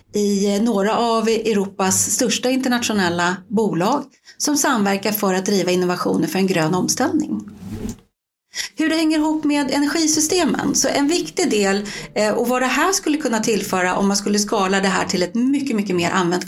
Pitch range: 195-270 Hz